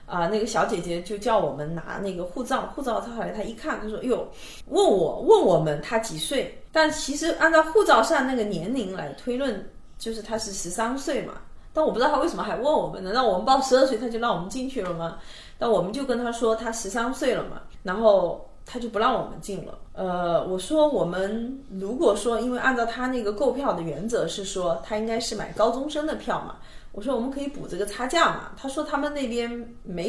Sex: female